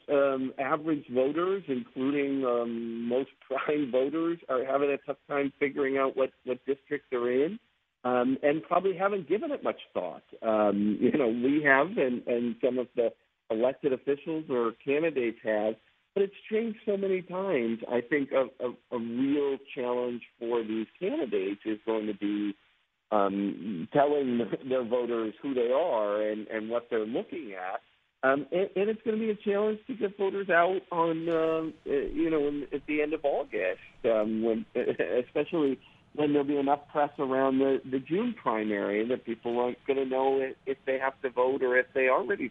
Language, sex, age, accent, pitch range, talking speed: English, male, 50-69, American, 120-150 Hz, 180 wpm